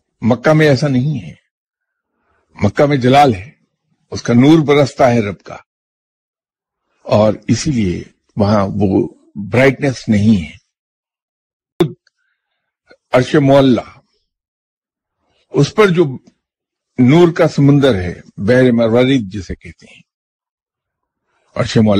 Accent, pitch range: Indian, 105-145 Hz